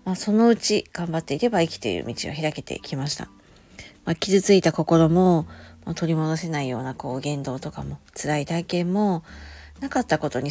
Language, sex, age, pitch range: Japanese, female, 50-69, 140-180 Hz